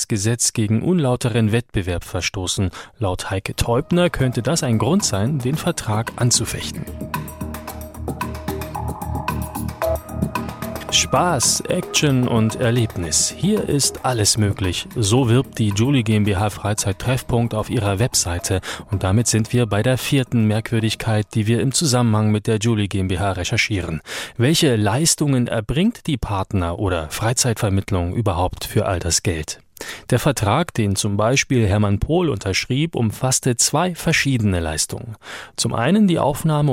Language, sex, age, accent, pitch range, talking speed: German, male, 30-49, German, 100-130 Hz, 125 wpm